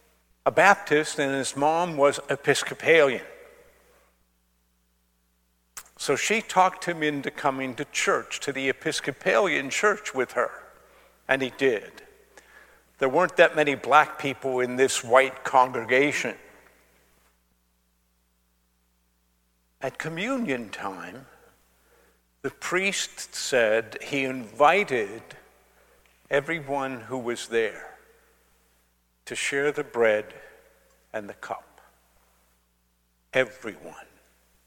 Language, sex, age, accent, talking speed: English, male, 50-69, American, 95 wpm